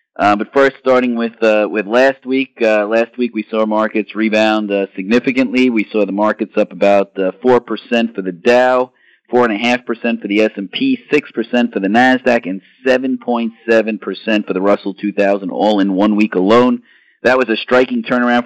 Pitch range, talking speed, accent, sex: 105-120 Hz, 170 wpm, American, male